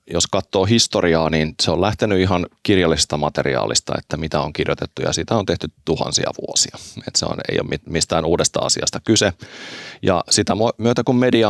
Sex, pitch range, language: male, 80-90 Hz, Finnish